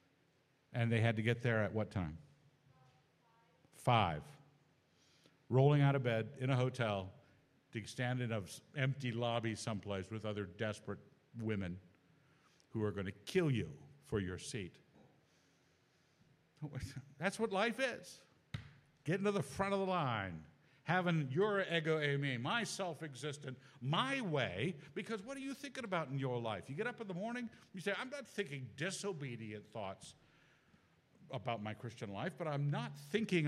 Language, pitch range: English, 120-180 Hz